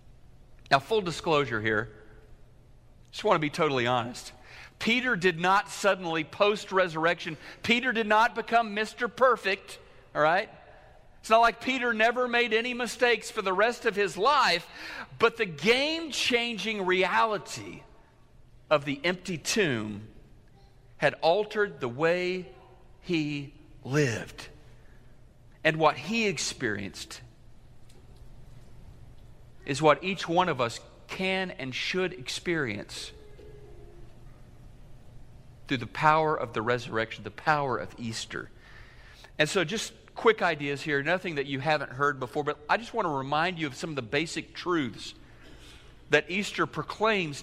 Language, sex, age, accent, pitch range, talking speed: English, male, 50-69, American, 125-195 Hz, 130 wpm